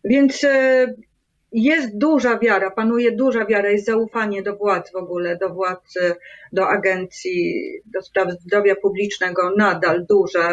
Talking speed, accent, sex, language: 130 wpm, native, female, Polish